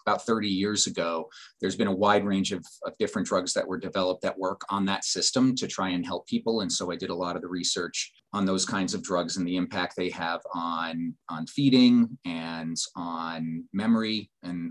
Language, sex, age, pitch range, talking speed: English, male, 30-49, 95-145 Hz, 210 wpm